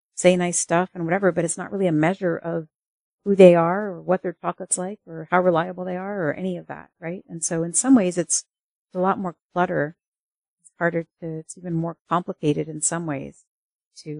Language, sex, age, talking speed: English, female, 50-69, 215 wpm